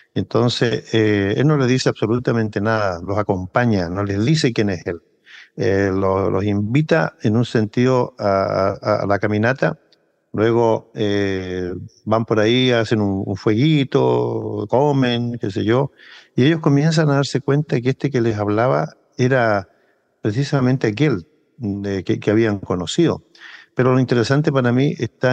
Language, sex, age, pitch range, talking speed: Spanish, male, 50-69, 105-125 Hz, 155 wpm